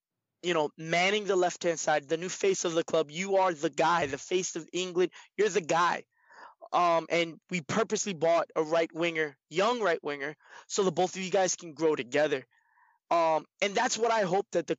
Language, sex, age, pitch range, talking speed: English, male, 20-39, 160-190 Hz, 200 wpm